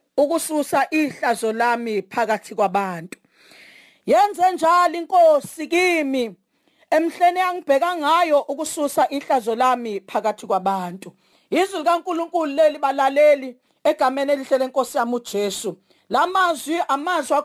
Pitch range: 280-360 Hz